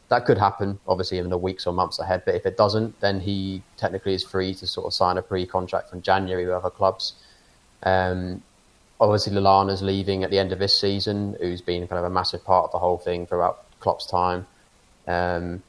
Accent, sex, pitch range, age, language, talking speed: British, male, 90-100 Hz, 20-39, English, 210 wpm